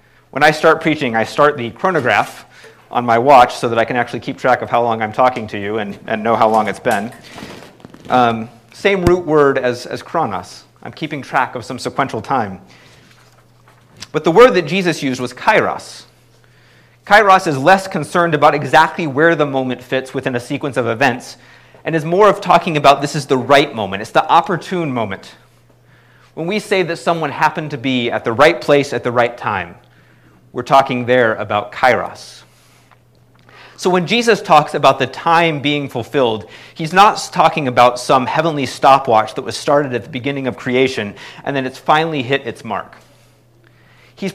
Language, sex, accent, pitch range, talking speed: English, male, American, 120-160 Hz, 185 wpm